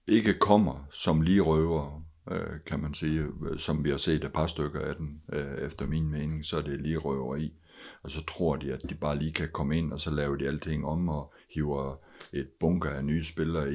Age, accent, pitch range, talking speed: 60-79, native, 75-85 Hz, 220 wpm